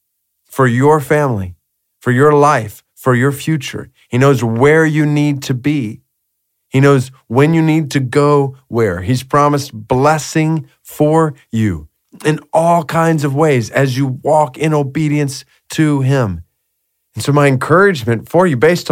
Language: English